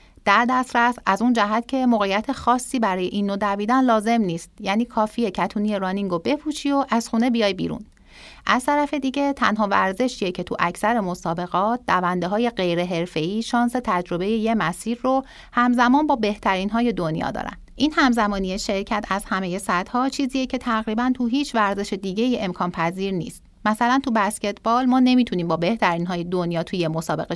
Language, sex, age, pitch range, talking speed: English, female, 40-59, 190-250 Hz, 165 wpm